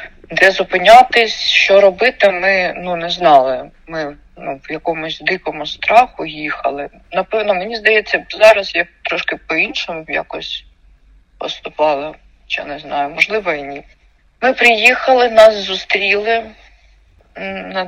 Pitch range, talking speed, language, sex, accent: 155-220 Hz, 120 wpm, Ukrainian, female, native